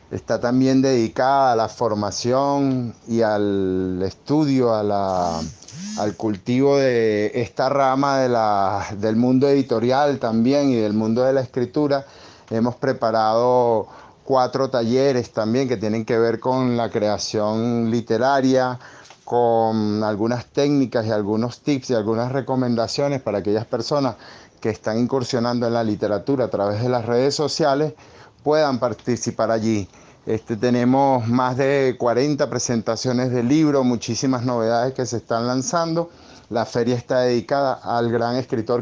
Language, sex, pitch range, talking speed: Spanish, male, 115-140 Hz, 140 wpm